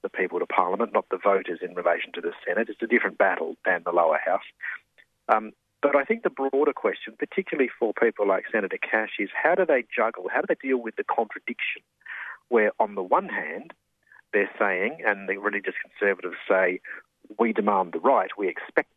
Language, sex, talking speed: English, male, 200 wpm